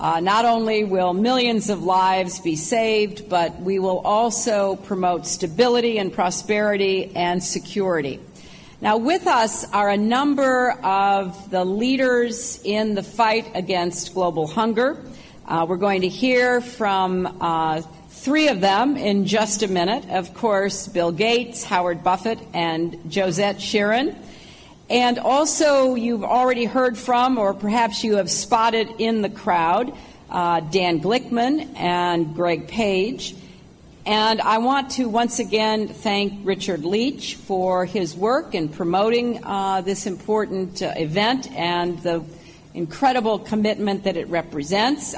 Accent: American